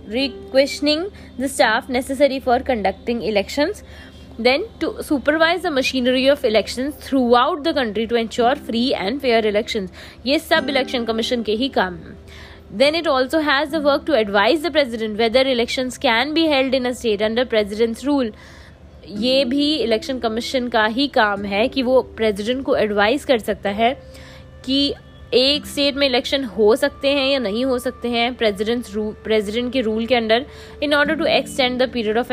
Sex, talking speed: female, 175 wpm